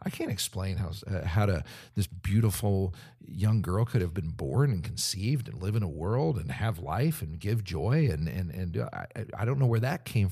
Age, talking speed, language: 50-69, 210 wpm, English